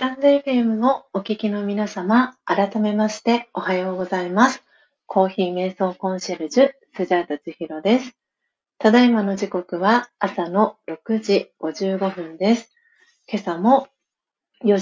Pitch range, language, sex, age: 180-230 Hz, Japanese, female, 40-59